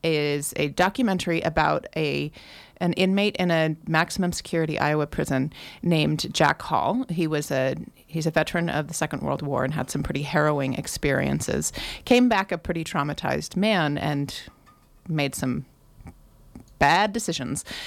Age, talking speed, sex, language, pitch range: 30-49, 150 wpm, female, English, 155-180 Hz